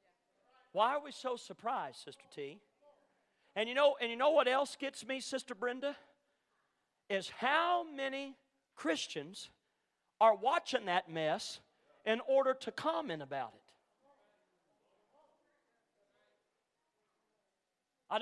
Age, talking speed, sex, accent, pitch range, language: 40-59, 110 wpm, male, American, 215-285 Hz, English